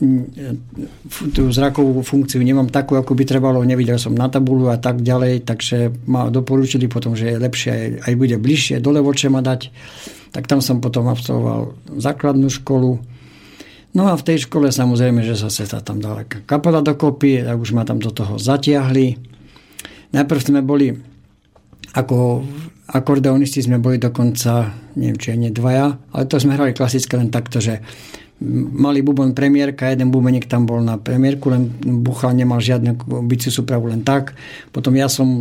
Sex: male